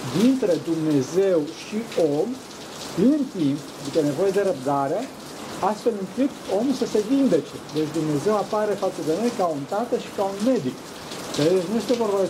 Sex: male